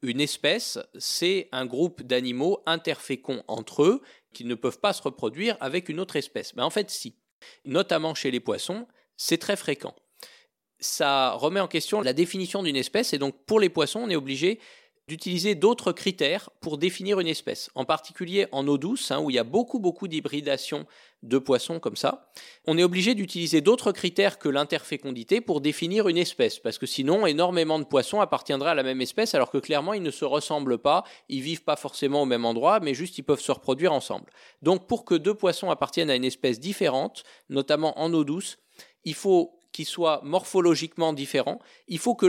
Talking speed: 195 wpm